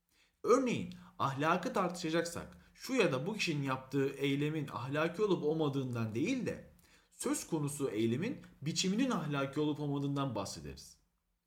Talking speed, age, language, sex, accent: 120 wpm, 40-59, Turkish, male, native